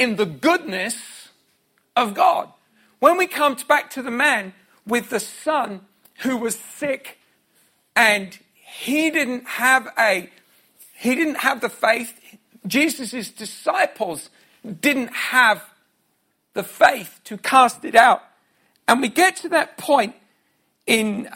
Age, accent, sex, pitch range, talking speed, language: 50-69, British, male, 170-245 Hz, 125 wpm, English